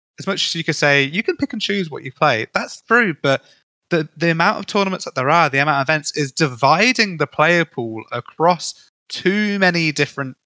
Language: English